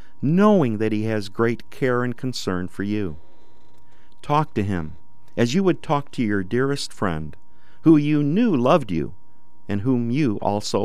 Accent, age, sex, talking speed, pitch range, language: American, 50-69, male, 165 wpm, 105-130 Hz, English